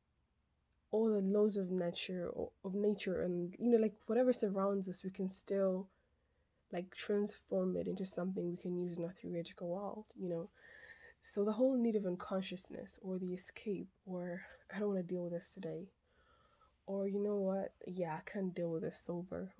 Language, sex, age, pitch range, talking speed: English, female, 20-39, 180-210 Hz, 185 wpm